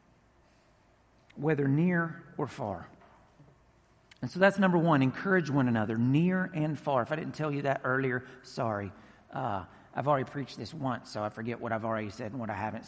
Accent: American